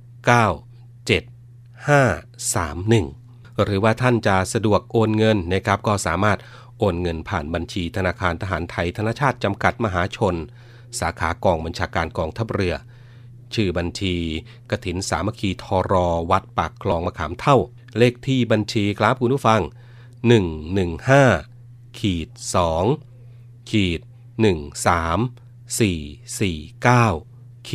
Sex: male